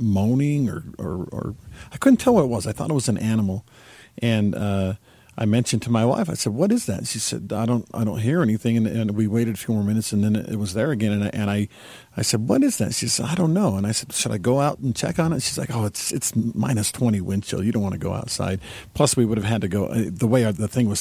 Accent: American